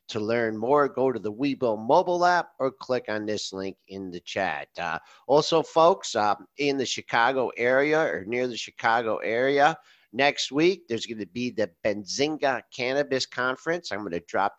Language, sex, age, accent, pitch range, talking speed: English, male, 50-69, American, 110-150 Hz, 180 wpm